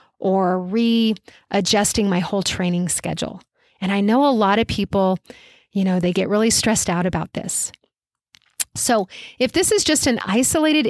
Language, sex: English, female